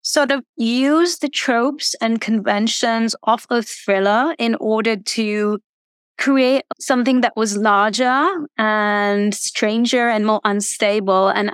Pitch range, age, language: 200-230 Hz, 20-39, English